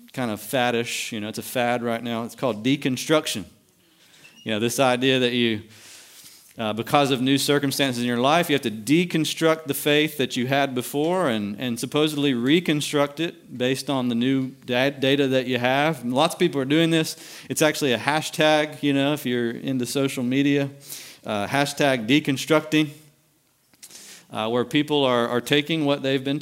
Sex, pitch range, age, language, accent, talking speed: male, 115-150 Hz, 40-59, English, American, 185 wpm